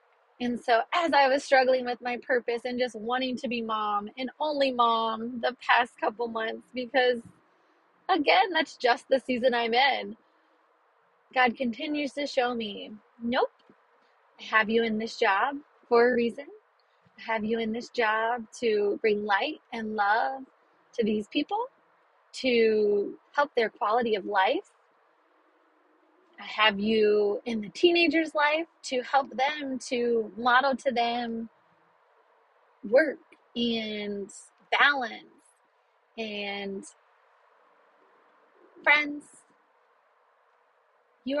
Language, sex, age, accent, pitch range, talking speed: English, female, 30-49, American, 230-295 Hz, 125 wpm